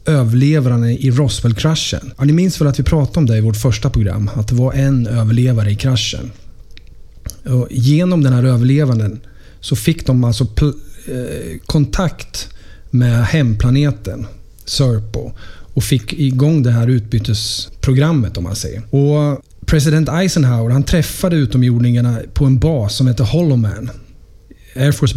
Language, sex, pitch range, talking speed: Swedish, male, 115-140 Hz, 145 wpm